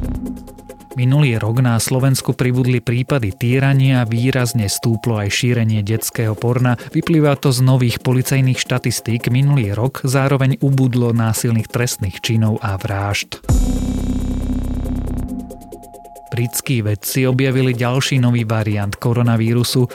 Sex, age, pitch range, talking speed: male, 30-49, 110-130 Hz, 110 wpm